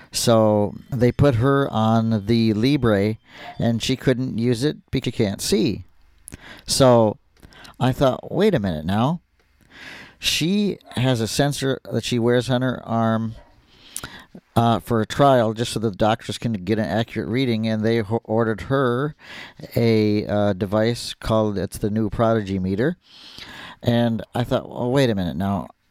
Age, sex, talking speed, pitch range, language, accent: 50-69, male, 155 wpm, 105-125 Hz, English, American